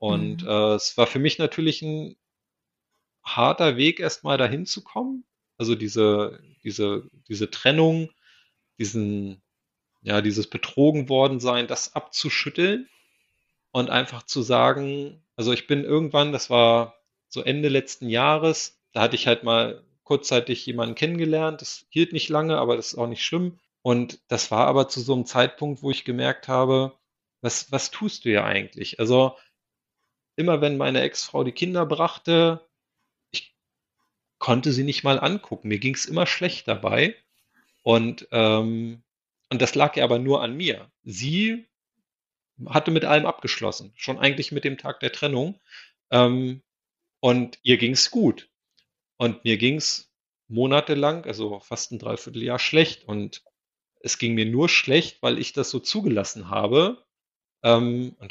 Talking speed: 150 wpm